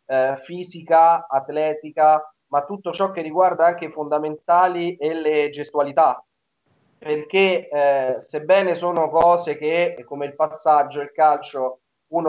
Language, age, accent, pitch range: Italian, 30-49, native, 140-175 Hz